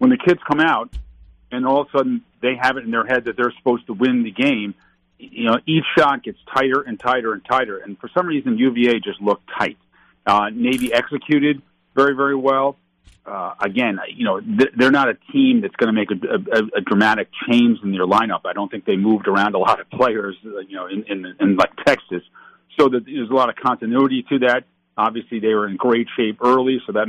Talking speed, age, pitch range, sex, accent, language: 225 wpm, 40-59, 105-145 Hz, male, American, English